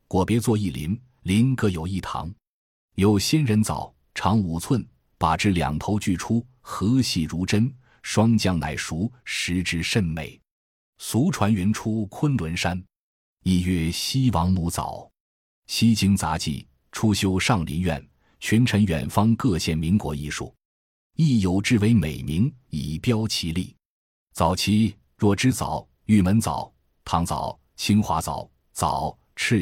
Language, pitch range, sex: Chinese, 80-115 Hz, male